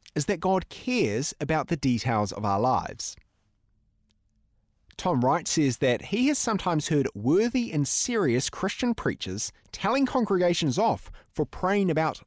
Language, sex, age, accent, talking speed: English, male, 30-49, Australian, 140 wpm